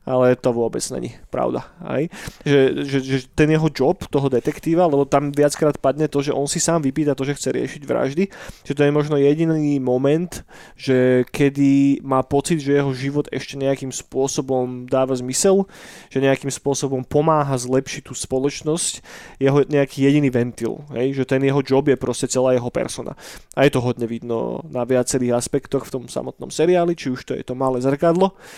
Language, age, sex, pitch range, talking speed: Slovak, 20-39, male, 130-150 Hz, 185 wpm